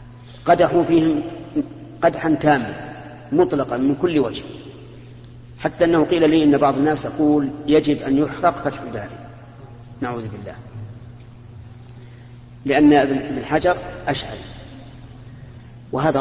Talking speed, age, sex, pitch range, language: 105 wpm, 50-69, male, 120-145 Hz, Arabic